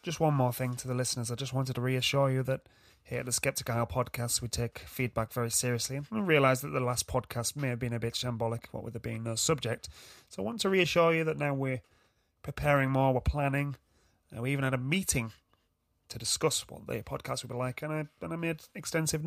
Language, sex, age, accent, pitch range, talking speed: English, male, 30-49, British, 115-150 Hz, 235 wpm